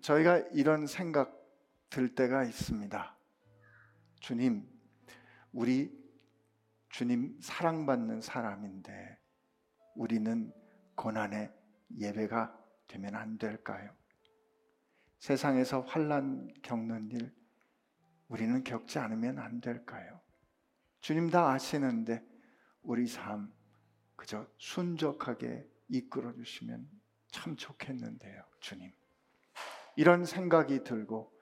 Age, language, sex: 50-69, Korean, male